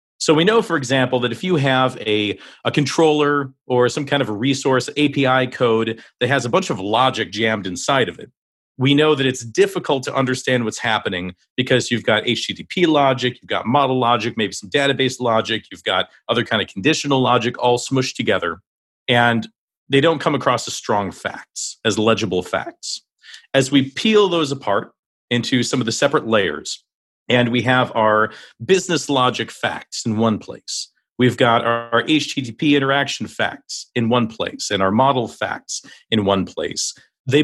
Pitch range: 115-140 Hz